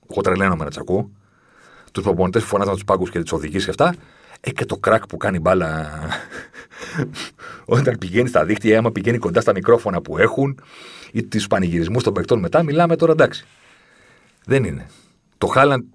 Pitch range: 85-110 Hz